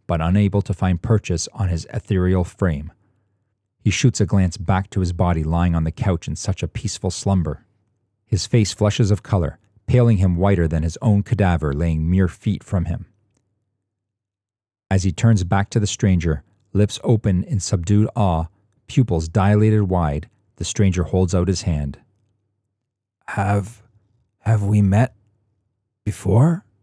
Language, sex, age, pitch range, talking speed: English, male, 40-59, 90-105 Hz, 155 wpm